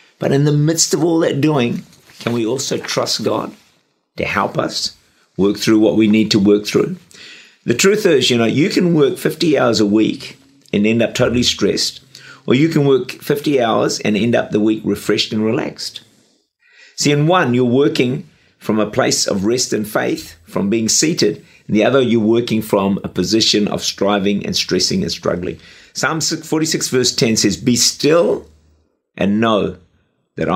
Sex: male